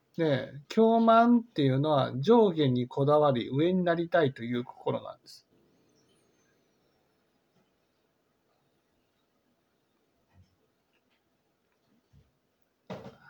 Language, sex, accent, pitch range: Japanese, male, native, 135-180 Hz